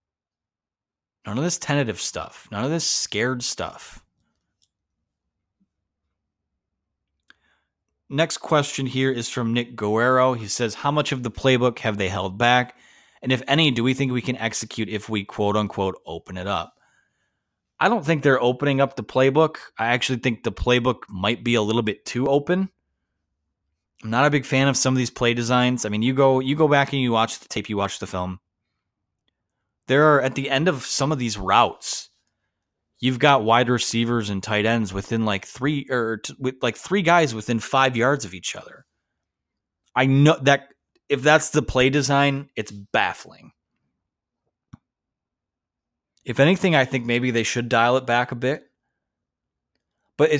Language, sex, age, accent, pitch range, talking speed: English, male, 30-49, American, 105-135 Hz, 175 wpm